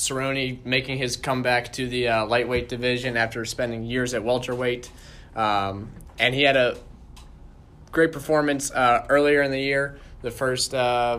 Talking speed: 155 wpm